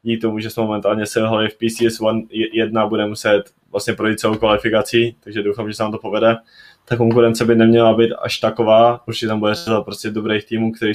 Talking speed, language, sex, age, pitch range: 205 wpm, Czech, male, 20-39, 105-115 Hz